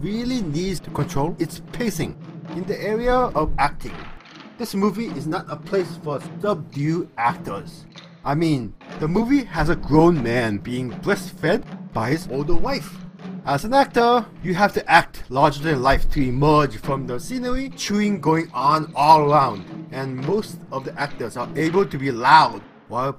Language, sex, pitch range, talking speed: English, male, 145-185 Hz, 170 wpm